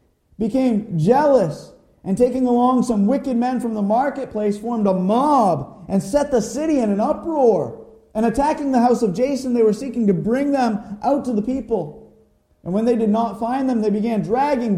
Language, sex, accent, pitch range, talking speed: English, male, American, 140-235 Hz, 190 wpm